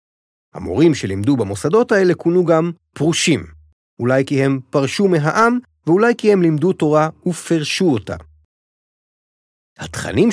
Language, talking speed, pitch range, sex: Hebrew, 115 wpm, 105-170 Hz, male